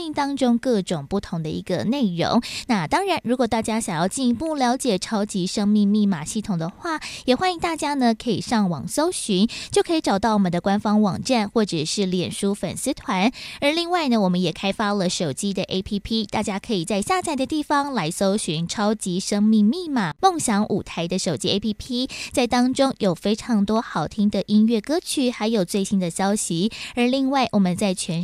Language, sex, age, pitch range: Chinese, female, 20-39, 195-255 Hz